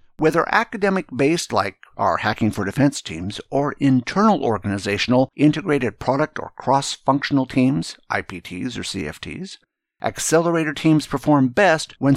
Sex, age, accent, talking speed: male, 60-79, American, 120 wpm